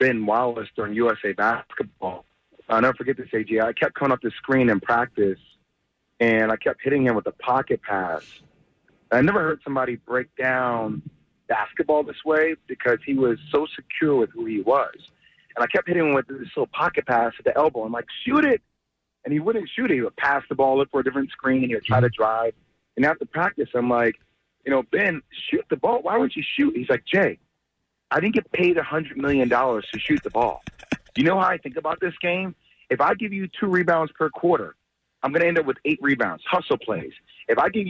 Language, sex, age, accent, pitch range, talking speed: English, male, 30-49, American, 130-205 Hz, 225 wpm